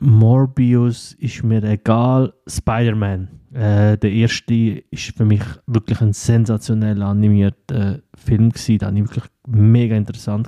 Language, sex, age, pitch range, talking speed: German, male, 20-39, 100-120 Hz, 125 wpm